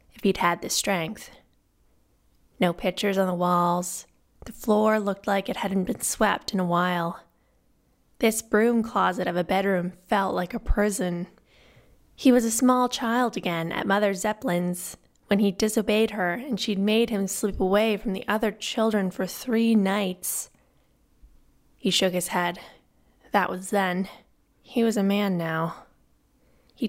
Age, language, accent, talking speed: 20-39, English, American, 155 wpm